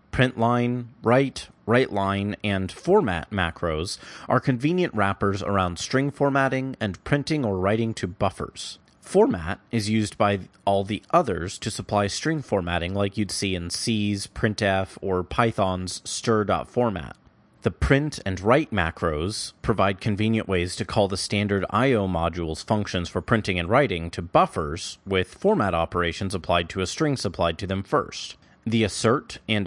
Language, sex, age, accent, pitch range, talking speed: English, male, 30-49, American, 95-115 Hz, 150 wpm